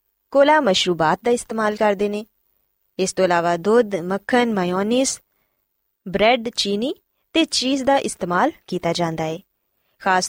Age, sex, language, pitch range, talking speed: 20-39, female, Punjabi, 185-270 Hz, 130 wpm